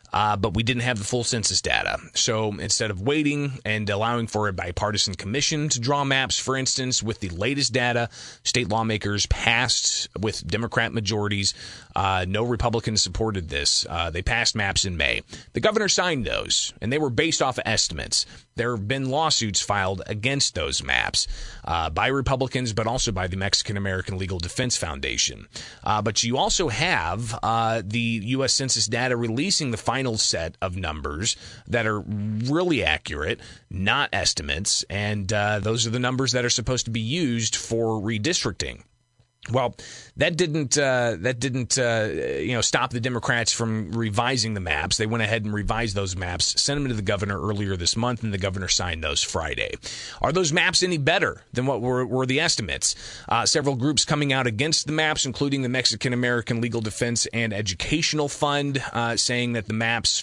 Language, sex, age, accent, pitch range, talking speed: English, male, 30-49, American, 100-125 Hz, 180 wpm